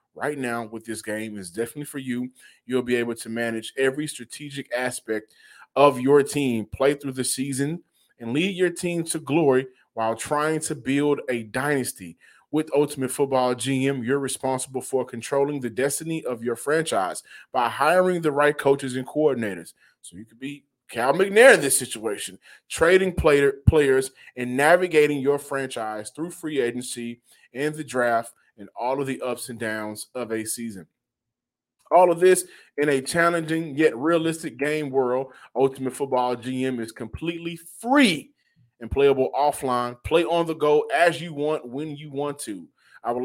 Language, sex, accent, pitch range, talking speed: English, male, American, 125-155 Hz, 165 wpm